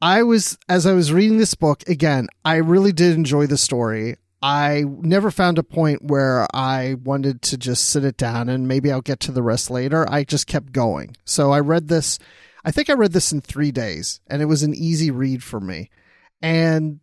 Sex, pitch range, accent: male, 135-170 Hz, American